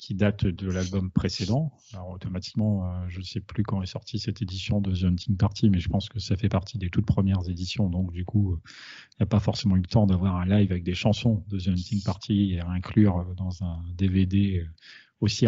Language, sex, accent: French, male, French